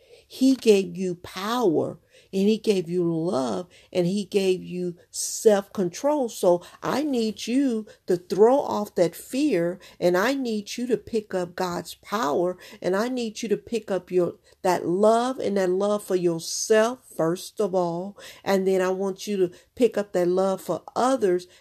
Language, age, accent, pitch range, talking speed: English, 50-69, American, 190-260 Hz, 170 wpm